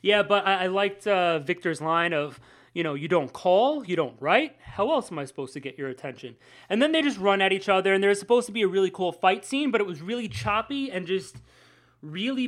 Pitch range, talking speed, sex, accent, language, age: 160-220 Hz, 245 wpm, male, American, English, 20-39